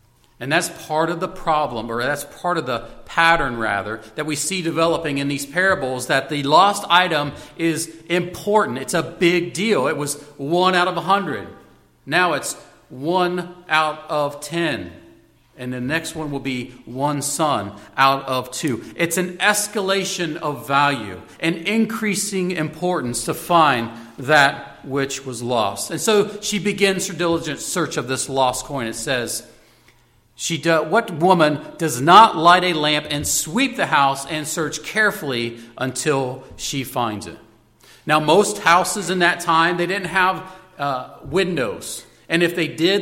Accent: American